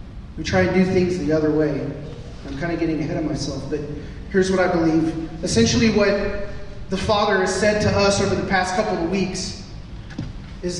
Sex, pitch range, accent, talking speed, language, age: male, 155-205 Hz, American, 195 wpm, English, 30-49